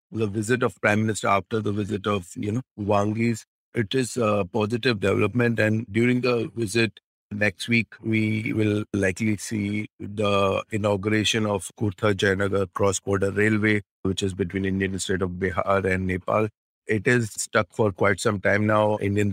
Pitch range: 100-110 Hz